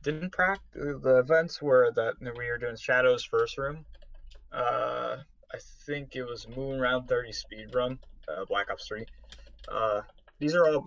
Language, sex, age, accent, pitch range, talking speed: English, male, 20-39, American, 105-150 Hz, 165 wpm